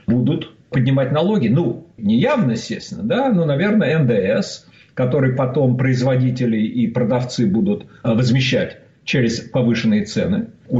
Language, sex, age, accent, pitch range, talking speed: Russian, male, 50-69, native, 135-200 Hz, 120 wpm